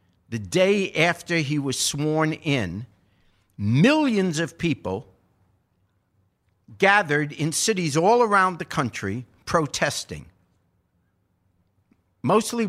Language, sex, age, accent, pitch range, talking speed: English, male, 50-69, American, 120-200 Hz, 90 wpm